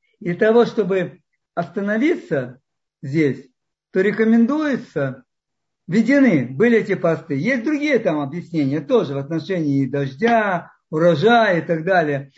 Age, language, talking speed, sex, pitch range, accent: 50-69, Russian, 110 wpm, male, 155-220 Hz, American